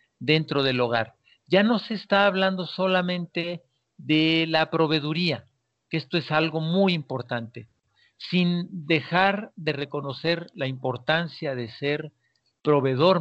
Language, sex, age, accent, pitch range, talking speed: Spanish, male, 50-69, Mexican, 125-165 Hz, 125 wpm